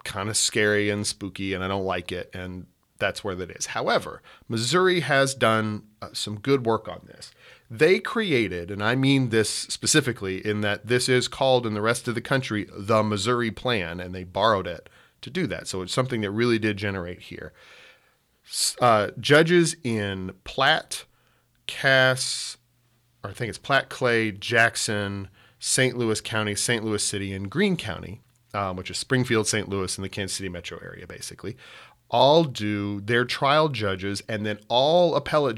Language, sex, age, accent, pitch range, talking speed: English, male, 40-59, American, 100-125 Hz, 175 wpm